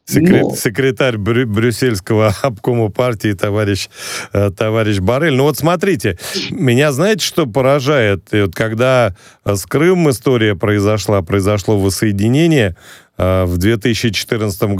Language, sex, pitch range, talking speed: Russian, male, 105-135 Hz, 95 wpm